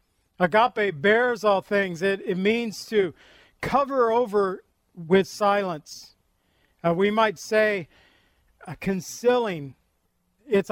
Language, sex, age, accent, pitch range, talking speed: English, male, 50-69, American, 175-220 Hz, 105 wpm